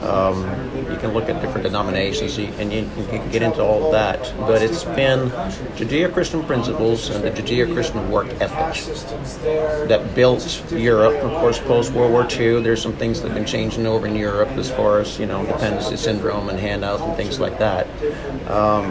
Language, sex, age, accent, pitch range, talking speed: English, male, 50-69, American, 110-130 Hz, 175 wpm